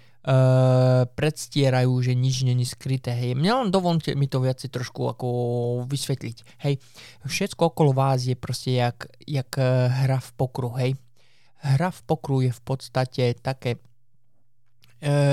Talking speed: 140 wpm